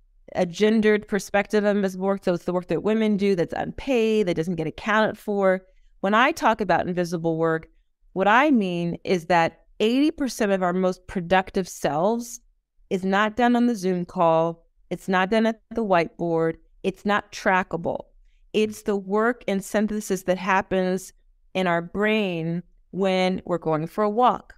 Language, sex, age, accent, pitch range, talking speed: English, female, 30-49, American, 175-210 Hz, 170 wpm